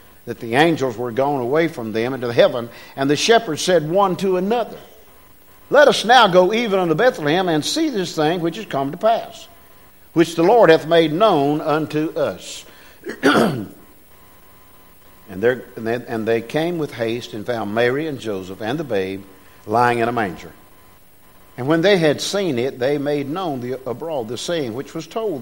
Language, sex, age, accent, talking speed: English, male, 50-69, American, 175 wpm